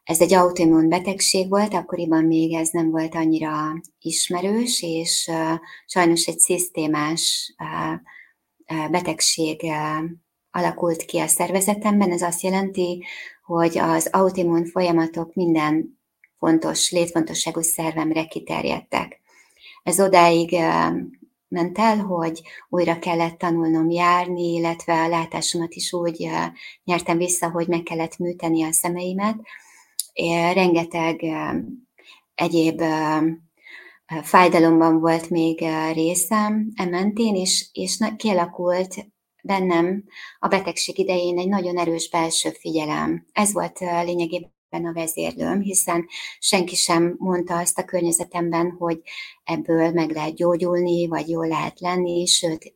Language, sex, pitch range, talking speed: Hungarian, female, 165-185 Hz, 110 wpm